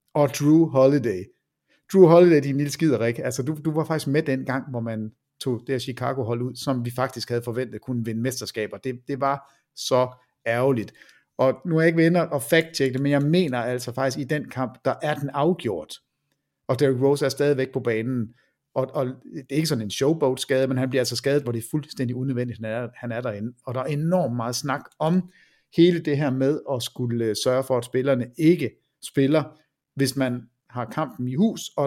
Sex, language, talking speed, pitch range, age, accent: male, Danish, 215 wpm, 125-160 Hz, 60-79, native